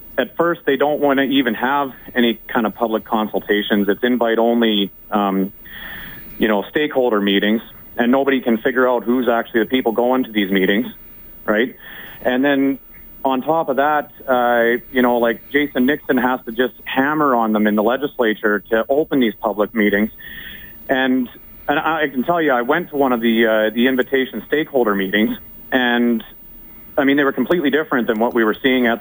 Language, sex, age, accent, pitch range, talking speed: English, male, 30-49, American, 110-140 Hz, 185 wpm